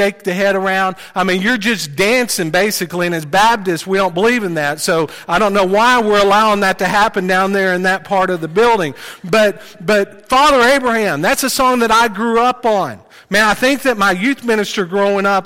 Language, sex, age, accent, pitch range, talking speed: English, male, 40-59, American, 185-235 Hz, 220 wpm